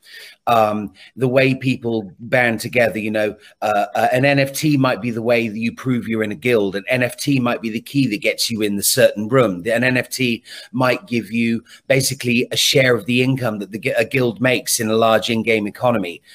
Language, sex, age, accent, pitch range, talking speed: English, male, 30-49, British, 115-140 Hz, 215 wpm